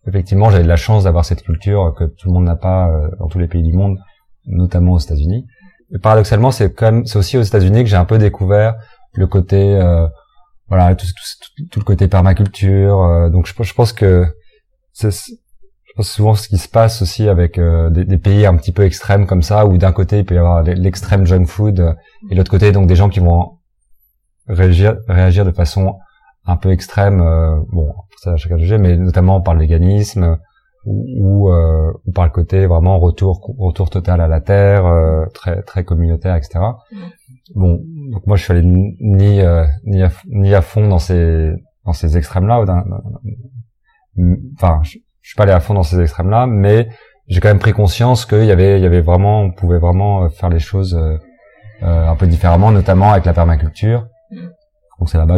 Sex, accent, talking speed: male, French, 210 wpm